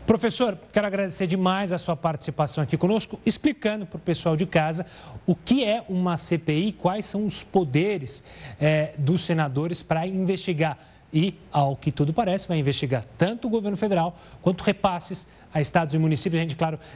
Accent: Brazilian